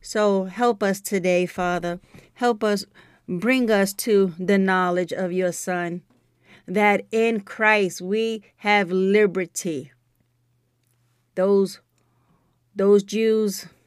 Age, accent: 30-49, American